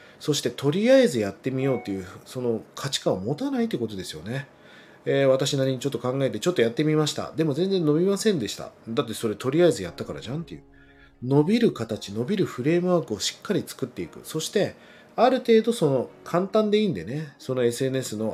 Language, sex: Japanese, male